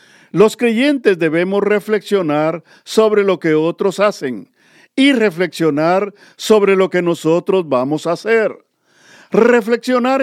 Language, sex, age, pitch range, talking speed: Spanish, male, 50-69, 165-205 Hz, 110 wpm